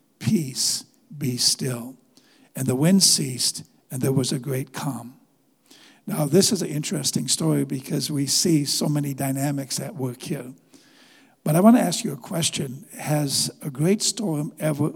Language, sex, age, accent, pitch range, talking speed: English, male, 60-79, American, 135-180 Hz, 165 wpm